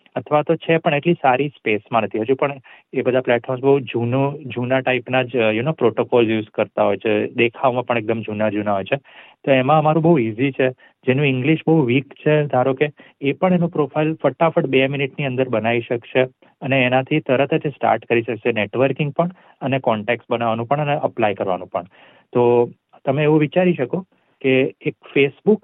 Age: 30-49